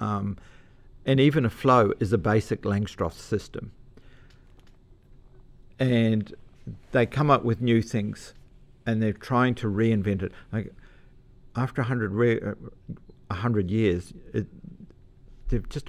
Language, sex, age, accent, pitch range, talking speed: English, male, 50-69, Australian, 105-130 Hz, 120 wpm